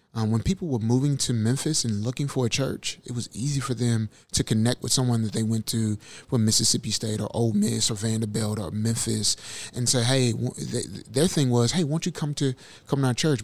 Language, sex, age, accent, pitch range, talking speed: English, male, 30-49, American, 115-135 Hz, 225 wpm